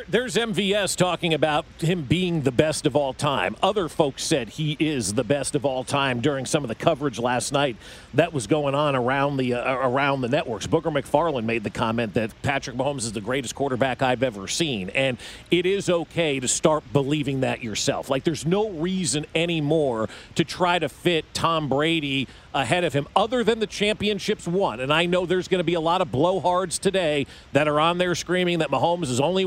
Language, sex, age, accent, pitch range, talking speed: English, male, 40-59, American, 140-170 Hz, 210 wpm